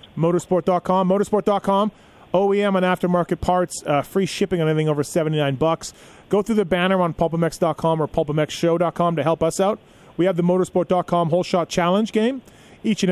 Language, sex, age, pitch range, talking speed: English, male, 30-49, 155-190 Hz, 165 wpm